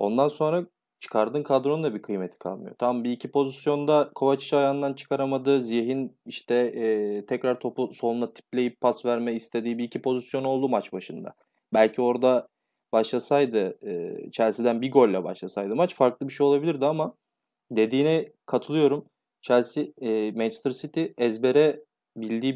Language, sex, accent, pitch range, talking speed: Turkish, male, native, 115-140 Hz, 140 wpm